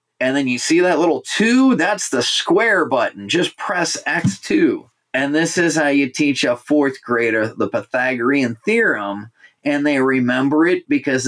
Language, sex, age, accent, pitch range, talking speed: English, male, 30-49, American, 120-155 Hz, 165 wpm